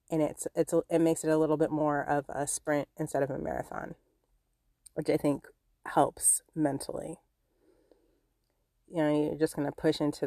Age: 30-49